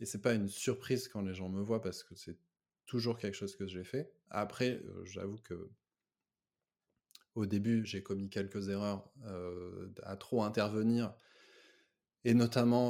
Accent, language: French, French